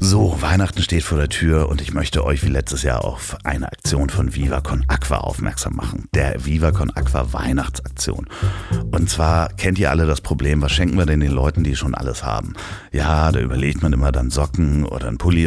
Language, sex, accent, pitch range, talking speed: German, male, German, 75-95 Hz, 210 wpm